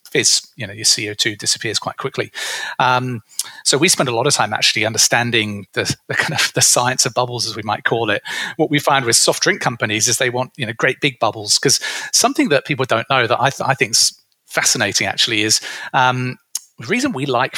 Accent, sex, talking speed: British, male, 220 wpm